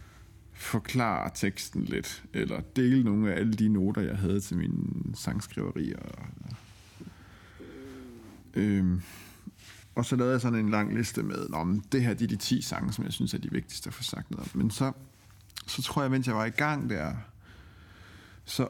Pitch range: 95-115 Hz